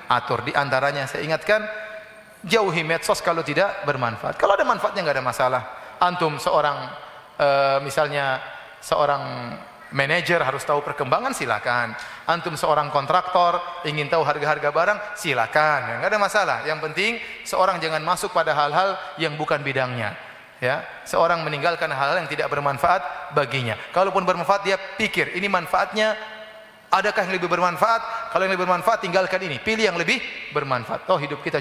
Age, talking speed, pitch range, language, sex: 30-49, 150 wpm, 145-195 Hz, Indonesian, male